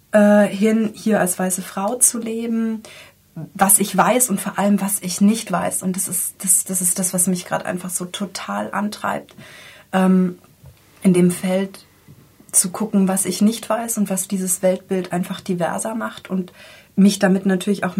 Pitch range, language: 180-205 Hz, German